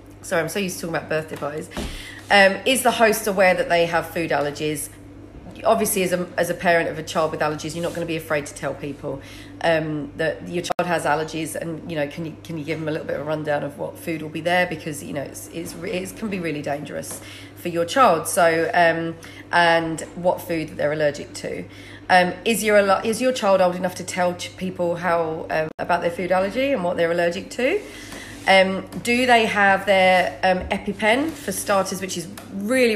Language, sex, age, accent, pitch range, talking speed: English, female, 40-59, British, 155-190 Hz, 220 wpm